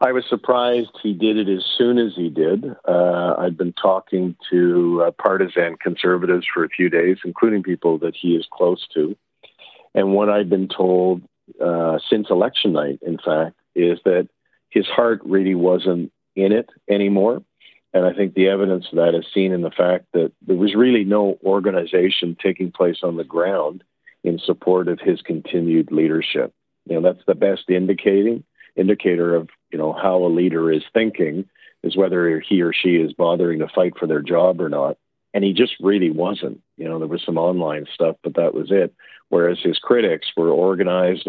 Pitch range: 85-95 Hz